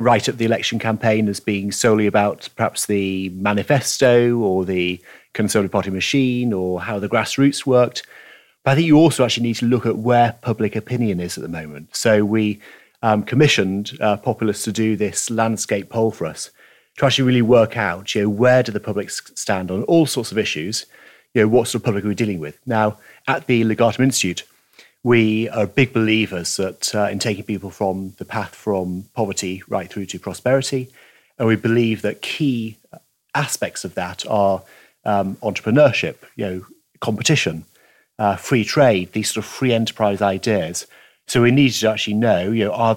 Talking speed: 190 wpm